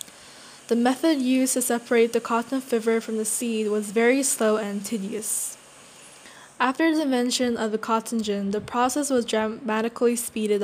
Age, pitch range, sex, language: 10-29, 210-240 Hz, female, Korean